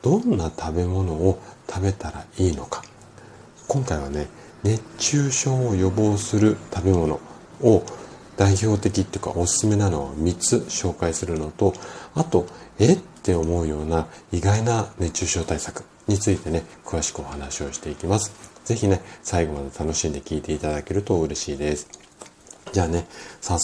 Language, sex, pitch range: Japanese, male, 80-100 Hz